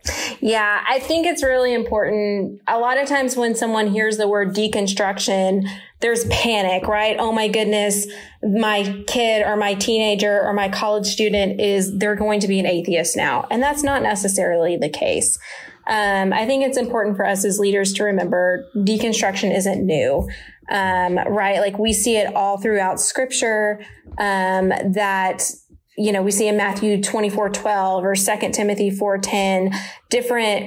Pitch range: 200-245 Hz